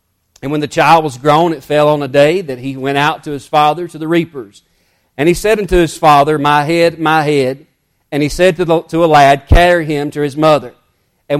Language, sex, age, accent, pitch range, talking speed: English, male, 40-59, American, 145-175 Hz, 235 wpm